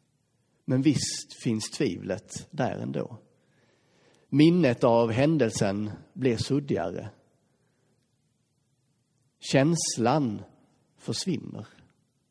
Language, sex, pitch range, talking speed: Swedish, male, 115-155 Hz, 65 wpm